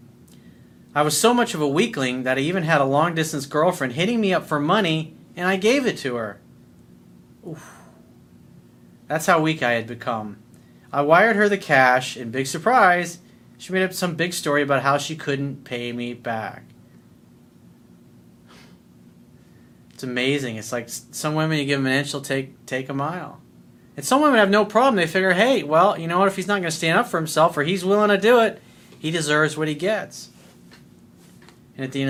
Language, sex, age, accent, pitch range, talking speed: English, male, 30-49, American, 125-185 Hz, 200 wpm